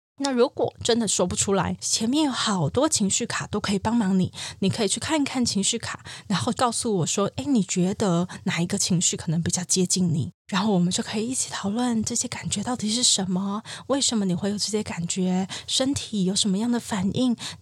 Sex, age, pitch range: female, 20-39, 185-240 Hz